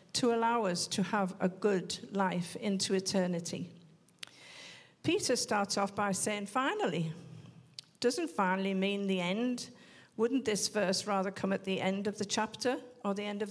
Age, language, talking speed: 50-69, English, 160 wpm